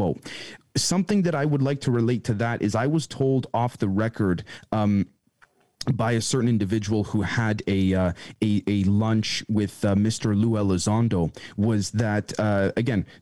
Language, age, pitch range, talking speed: English, 30-49, 105-135 Hz, 170 wpm